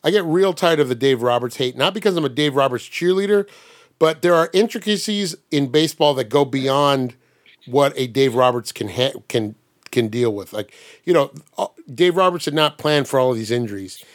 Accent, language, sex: American, English, male